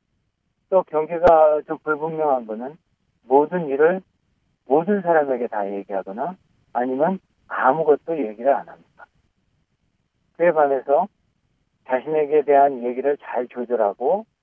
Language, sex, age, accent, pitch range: Korean, male, 40-59, native, 125-165 Hz